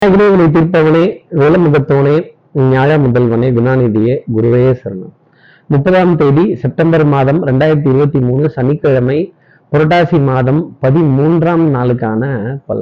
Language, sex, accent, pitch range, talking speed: Tamil, male, native, 130-165 Hz, 80 wpm